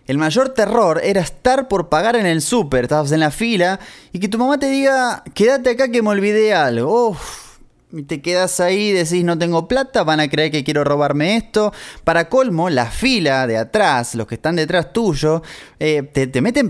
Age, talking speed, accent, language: 20-39, 200 wpm, Argentinian, Spanish